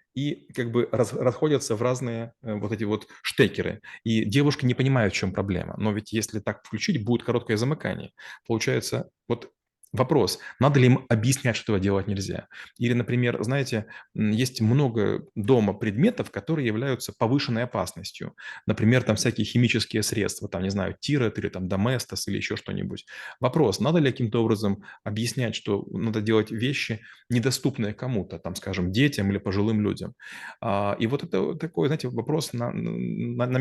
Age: 20-39